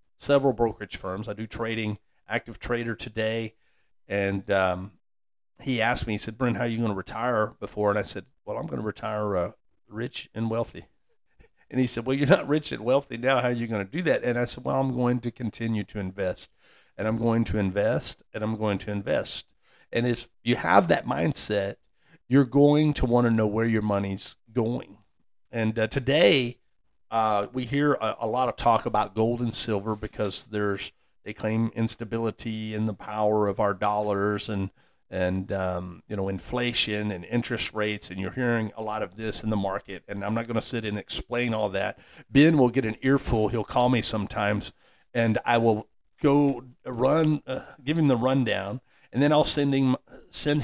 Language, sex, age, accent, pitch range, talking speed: English, male, 50-69, American, 105-125 Hz, 200 wpm